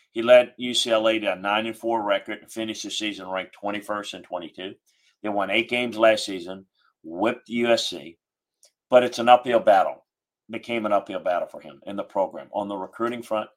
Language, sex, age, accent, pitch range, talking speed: English, male, 40-59, American, 100-120 Hz, 190 wpm